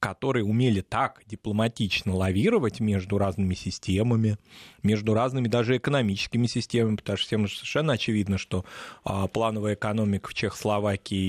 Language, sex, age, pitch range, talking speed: Russian, male, 20-39, 100-130 Hz, 130 wpm